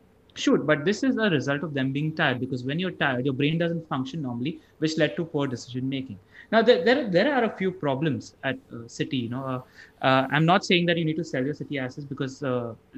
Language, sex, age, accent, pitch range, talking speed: English, male, 30-49, Indian, 130-160 Hz, 245 wpm